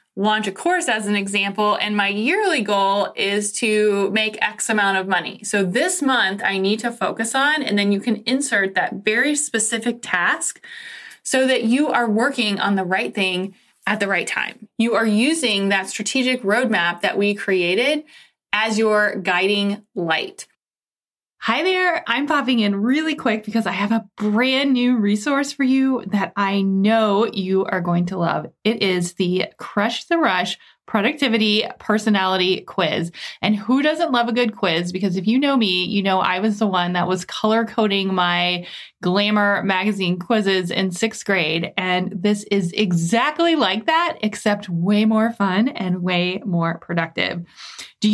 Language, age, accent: English, 20-39, American